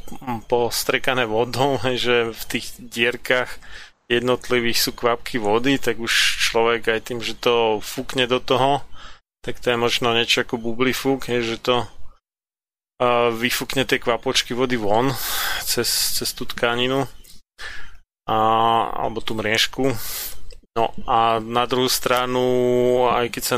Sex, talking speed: male, 130 wpm